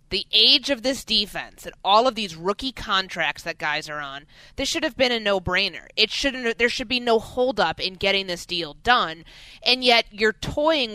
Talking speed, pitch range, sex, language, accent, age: 205 wpm, 170-215 Hz, female, English, American, 20-39